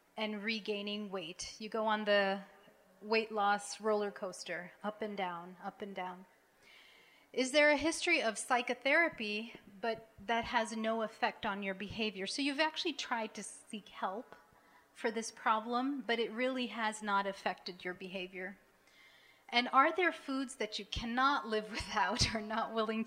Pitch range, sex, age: 200-260 Hz, female, 30-49